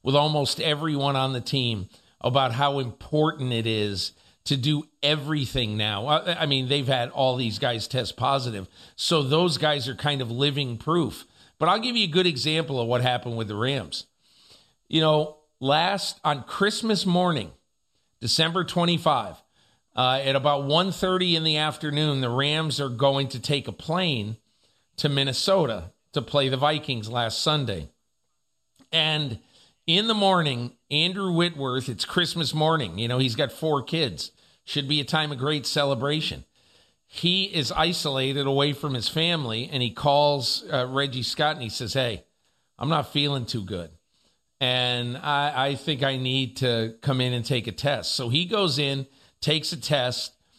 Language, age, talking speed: English, 50-69, 165 wpm